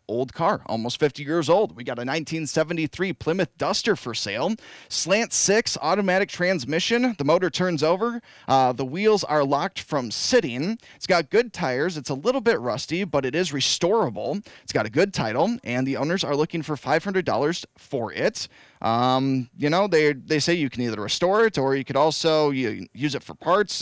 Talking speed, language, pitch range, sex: 195 wpm, English, 130-180 Hz, male